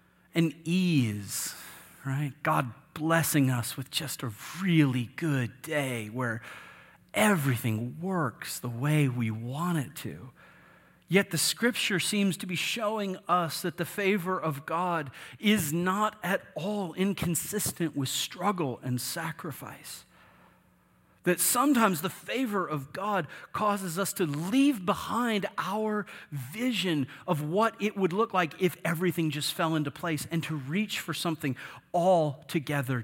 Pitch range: 150-210 Hz